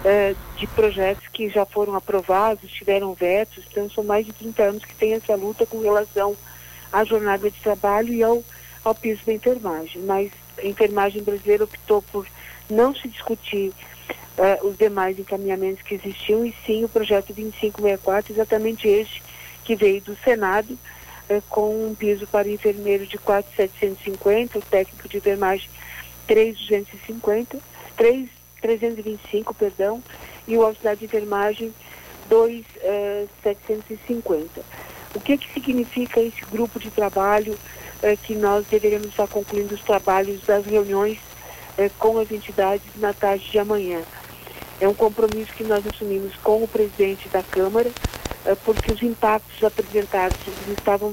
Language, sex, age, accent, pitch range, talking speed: Portuguese, female, 50-69, Brazilian, 200-220 Hz, 140 wpm